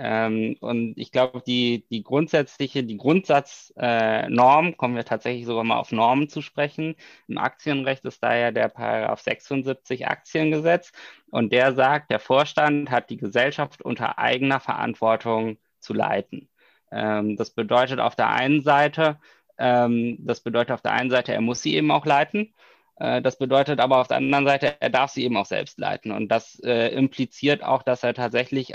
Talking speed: 175 wpm